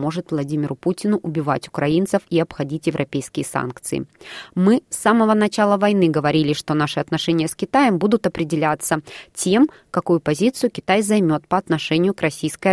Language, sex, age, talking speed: Russian, female, 20-39, 145 wpm